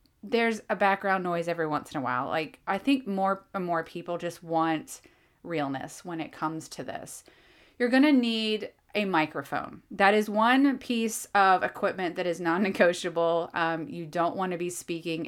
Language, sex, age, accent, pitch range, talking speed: English, female, 30-49, American, 165-210 Hz, 180 wpm